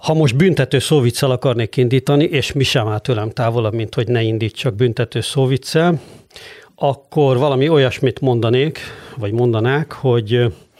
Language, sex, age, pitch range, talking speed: Hungarian, male, 50-69, 115-140 Hz, 140 wpm